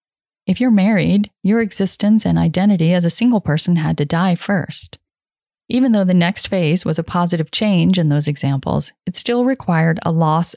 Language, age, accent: English, 30-49, American